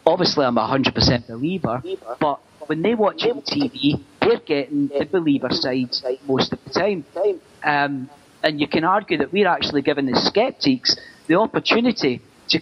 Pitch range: 140-200 Hz